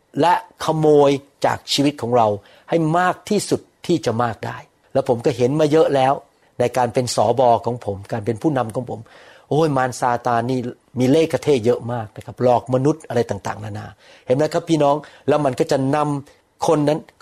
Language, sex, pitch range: Thai, male, 115-155 Hz